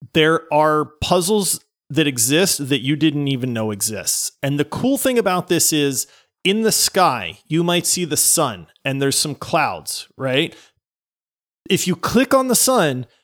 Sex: male